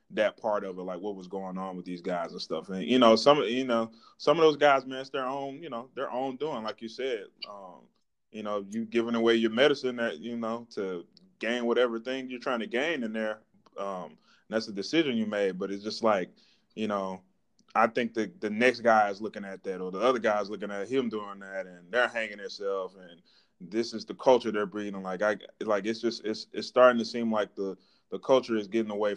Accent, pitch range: American, 100-120 Hz